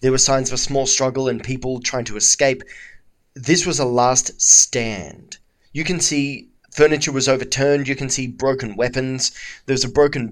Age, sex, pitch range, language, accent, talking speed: 20-39, male, 120-145 Hz, English, Australian, 180 wpm